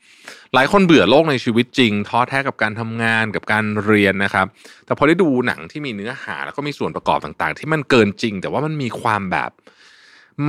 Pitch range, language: 95-140 Hz, Thai